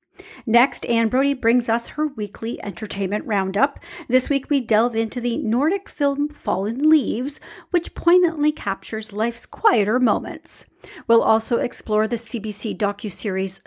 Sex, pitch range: female, 210-310 Hz